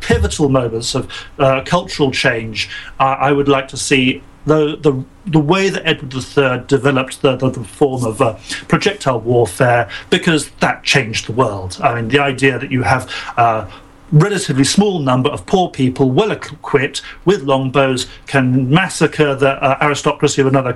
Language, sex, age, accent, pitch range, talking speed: English, male, 40-59, British, 130-160 Hz, 170 wpm